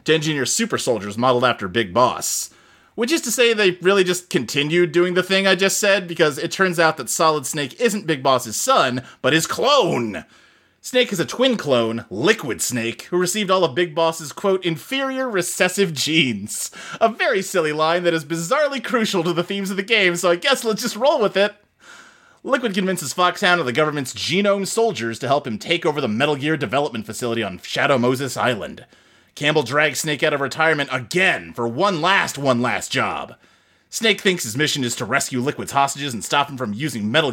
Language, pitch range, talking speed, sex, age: English, 140-200 Hz, 200 wpm, male, 30-49